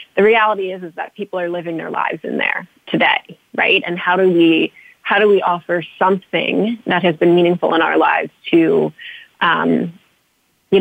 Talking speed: 185 wpm